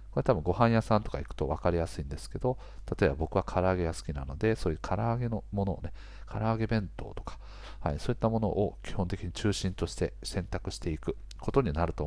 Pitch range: 85-110 Hz